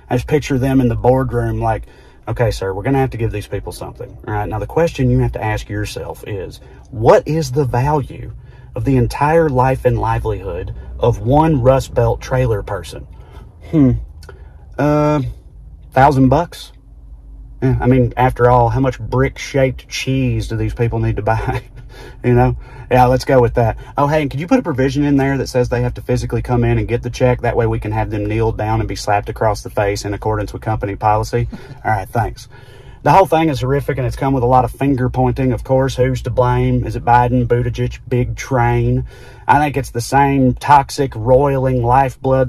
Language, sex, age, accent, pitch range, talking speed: English, male, 30-49, American, 115-135 Hz, 210 wpm